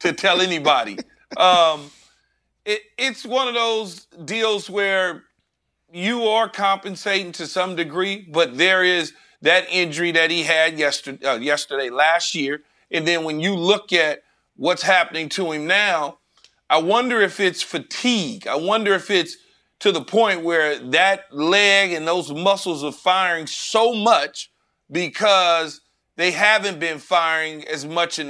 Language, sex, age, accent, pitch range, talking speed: English, male, 40-59, American, 160-195 Hz, 150 wpm